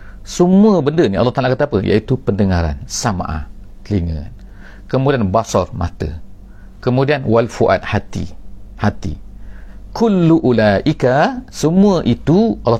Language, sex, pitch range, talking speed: English, male, 95-135 Hz, 110 wpm